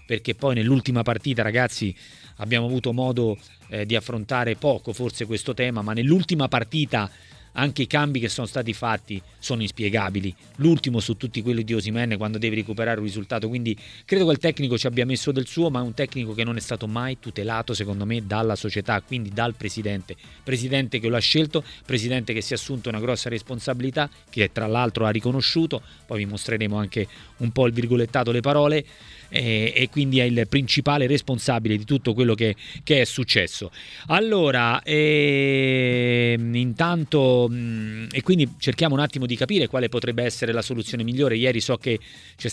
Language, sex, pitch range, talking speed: Italian, male, 115-135 Hz, 180 wpm